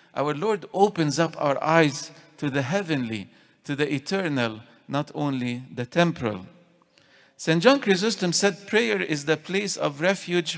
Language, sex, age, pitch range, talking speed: English, male, 50-69, 140-180 Hz, 145 wpm